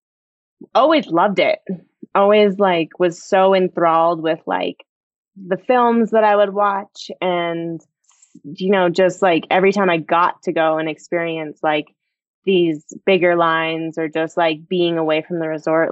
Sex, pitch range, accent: female, 160-190 Hz, American